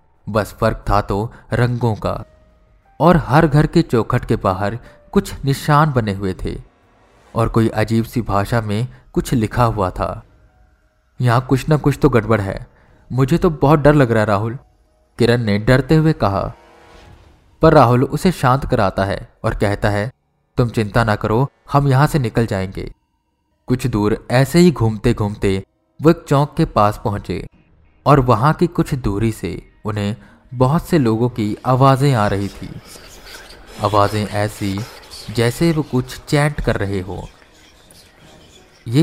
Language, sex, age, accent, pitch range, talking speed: Hindi, male, 20-39, native, 100-135 Hz, 155 wpm